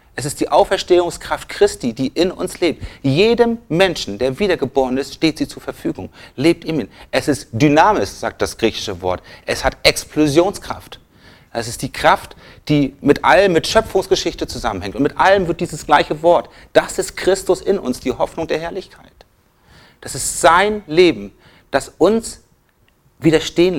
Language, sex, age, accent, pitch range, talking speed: German, male, 40-59, German, 125-175 Hz, 160 wpm